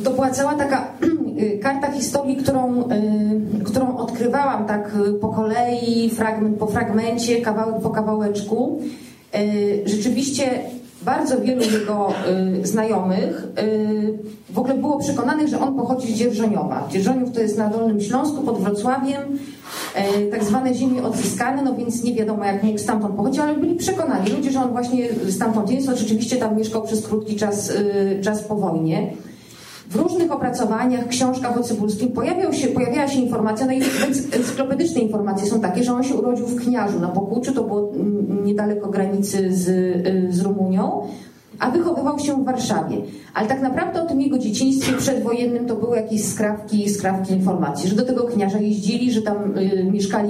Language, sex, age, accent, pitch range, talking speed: Polish, female, 30-49, native, 205-255 Hz, 155 wpm